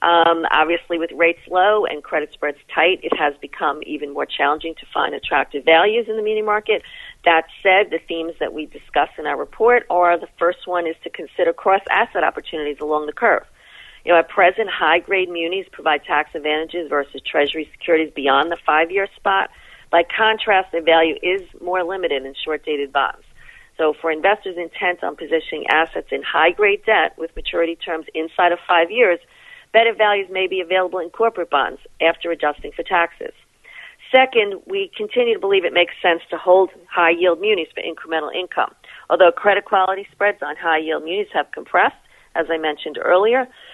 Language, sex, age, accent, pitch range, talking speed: English, female, 40-59, American, 160-210 Hz, 180 wpm